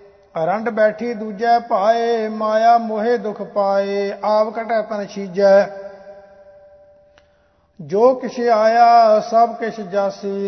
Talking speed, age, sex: 105 wpm, 50-69, male